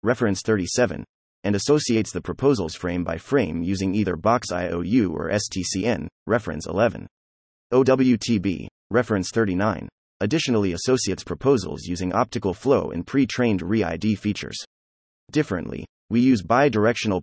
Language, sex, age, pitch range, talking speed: English, male, 30-49, 90-120 Hz, 120 wpm